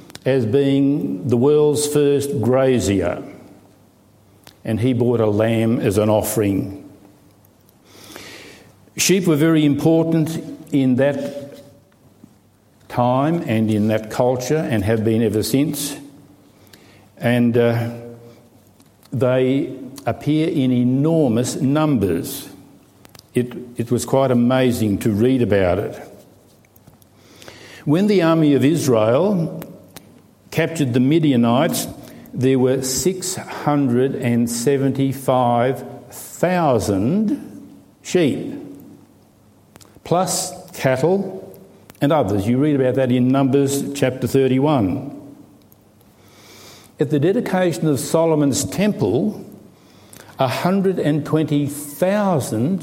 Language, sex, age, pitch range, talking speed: English, male, 60-79, 115-145 Hz, 85 wpm